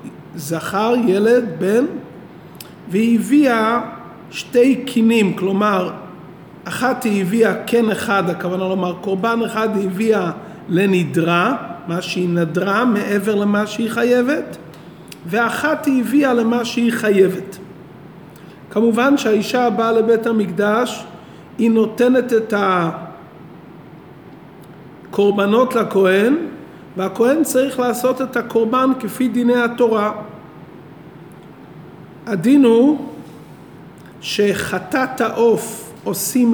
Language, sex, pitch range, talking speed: Hebrew, male, 185-240 Hz, 90 wpm